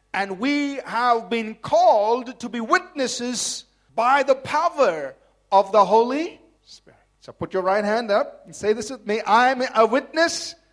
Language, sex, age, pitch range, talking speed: English, male, 40-59, 210-280 Hz, 170 wpm